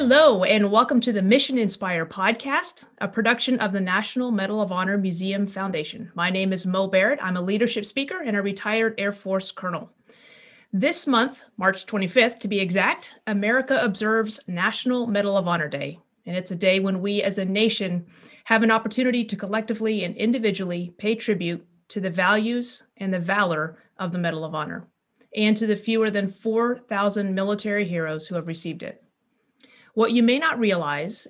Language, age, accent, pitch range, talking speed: English, 30-49, American, 185-230 Hz, 180 wpm